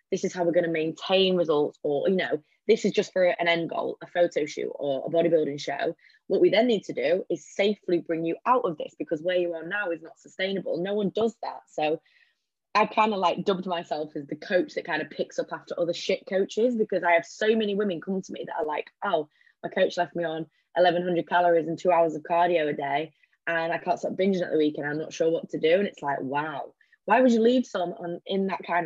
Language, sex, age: English, female, 20-39